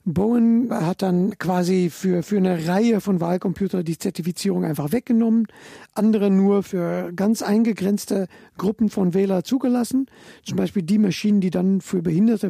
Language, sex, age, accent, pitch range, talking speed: German, male, 50-69, German, 175-215 Hz, 150 wpm